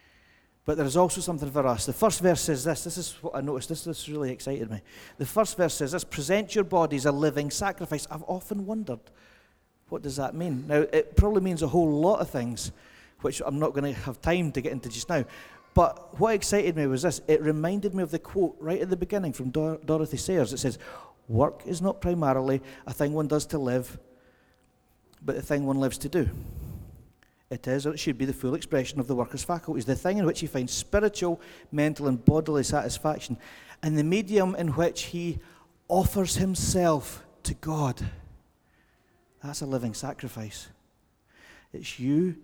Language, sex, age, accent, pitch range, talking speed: English, male, 40-59, British, 130-170 Hz, 195 wpm